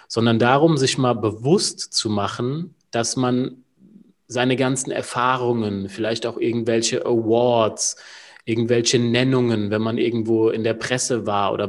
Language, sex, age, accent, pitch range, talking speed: German, male, 30-49, German, 115-140 Hz, 135 wpm